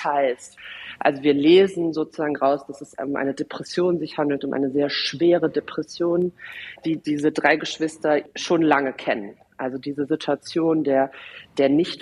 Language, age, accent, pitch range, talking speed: German, 40-59, German, 145-175 Hz, 155 wpm